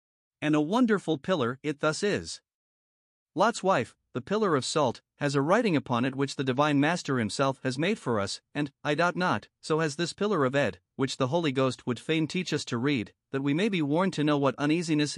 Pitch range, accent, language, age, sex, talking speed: 130-175 Hz, American, English, 50-69, male, 220 wpm